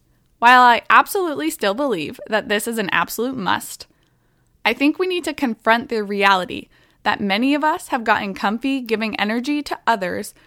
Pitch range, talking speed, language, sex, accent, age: 200-265 Hz, 170 wpm, English, female, American, 20-39